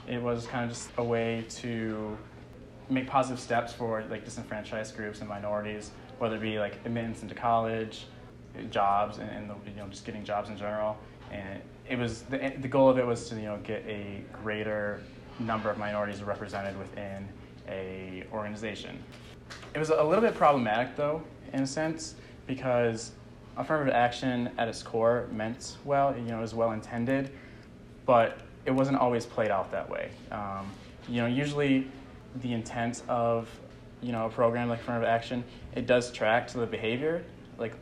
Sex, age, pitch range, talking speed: male, 20-39, 105-125 Hz, 175 wpm